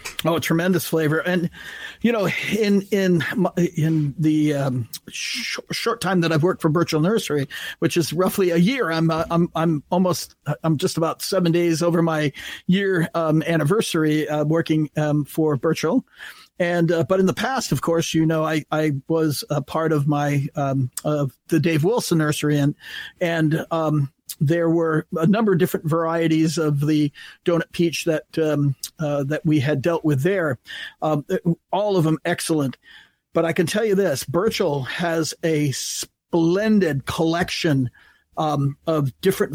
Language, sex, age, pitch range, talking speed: English, male, 40-59, 150-175 Hz, 170 wpm